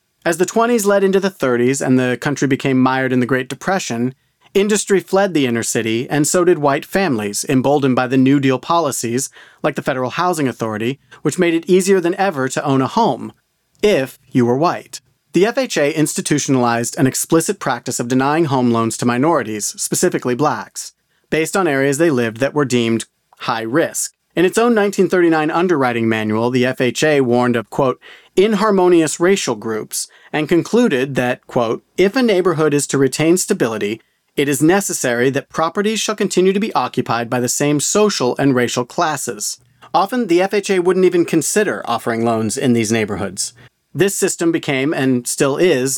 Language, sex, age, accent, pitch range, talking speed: English, male, 40-59, American, 125-175 Hz, 175 wpm